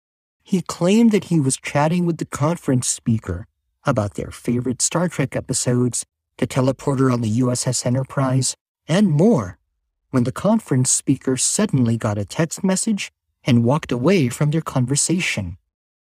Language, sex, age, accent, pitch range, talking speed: English, male, 50-69, American, 115-165 Hz, 145 wpm